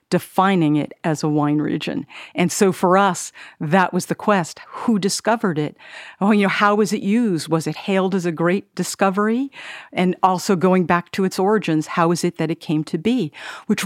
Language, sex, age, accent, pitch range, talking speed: English, female, 50-69, American, 160-195 Hz, 205 wpm